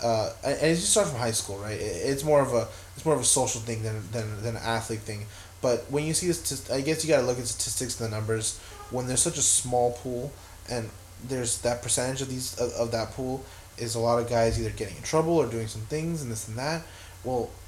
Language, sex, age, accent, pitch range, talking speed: English, male, 20-39, American, 100-125 Hz, 250 wpm